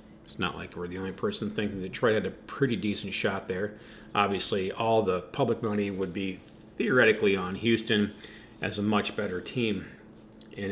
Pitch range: 95-115 Hz